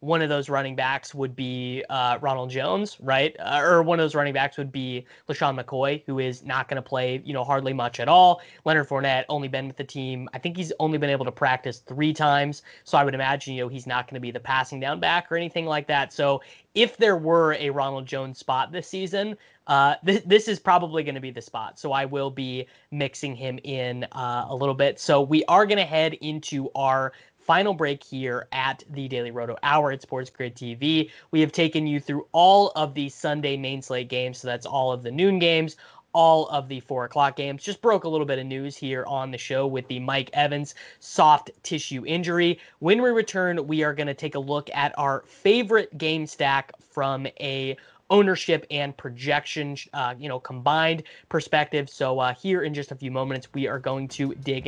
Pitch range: 130-155 Hz